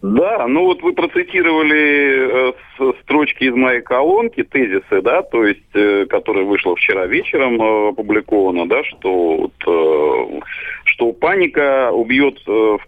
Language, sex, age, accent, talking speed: Russian, male, 40-59, native, 110 wpm